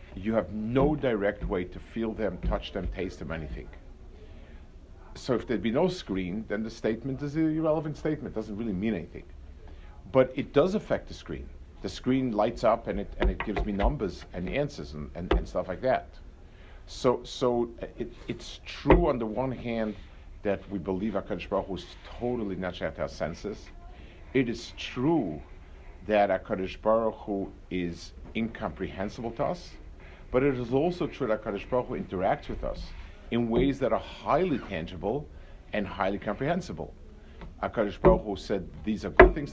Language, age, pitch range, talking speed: English, 50-69, 85-120 Hz, 170 wpm